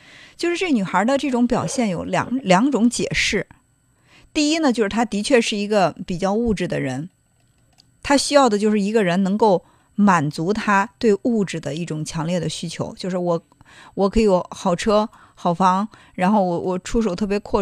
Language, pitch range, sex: Chinese, 170-235 Hz, female